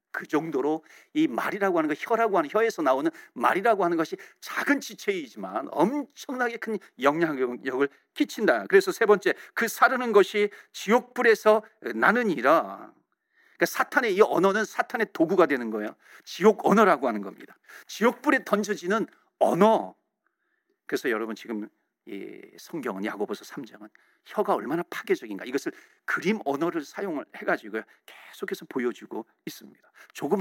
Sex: male